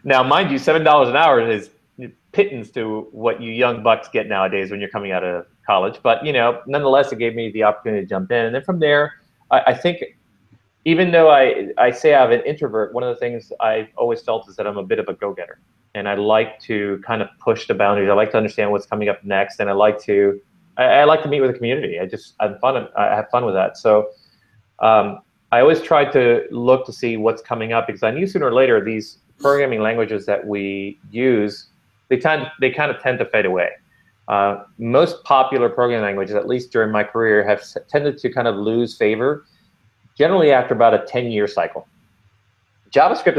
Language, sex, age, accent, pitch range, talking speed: English, male, 30-49, American, 105-125 Hz, 220 wpm